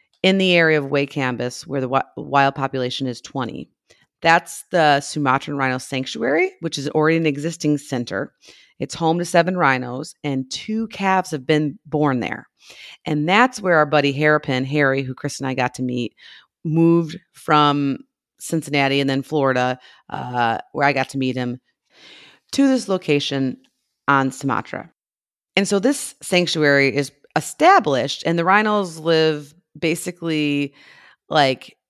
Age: 30-49